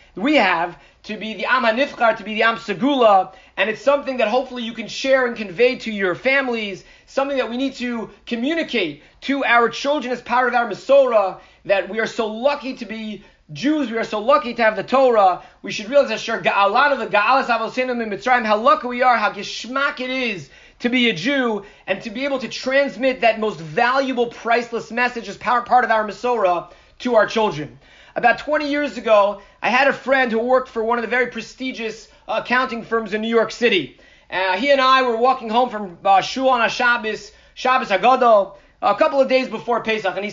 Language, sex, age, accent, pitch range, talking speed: English, male, 30-49, American, 220-265 Hz, 210 wpm